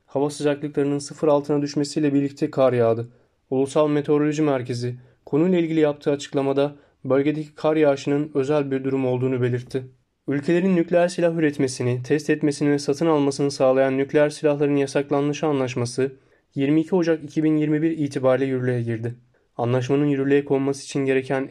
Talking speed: 135 wpm